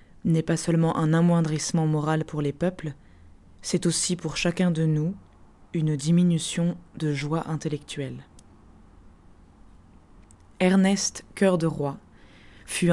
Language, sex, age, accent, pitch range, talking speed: French, female, 20-39, French, 150-180 Hz, 115 wpm